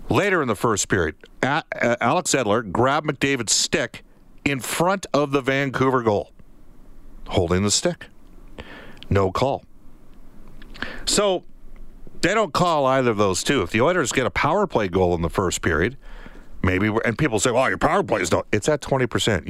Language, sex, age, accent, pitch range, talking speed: English, male, 50-69, American, 100-135 Hz, 165 wpm